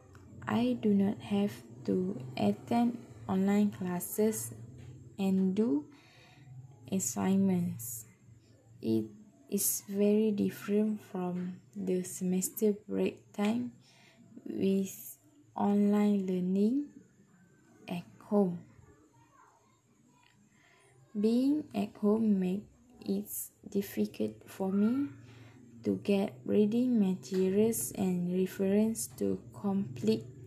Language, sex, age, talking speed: English, female, 10-29, 80 wpm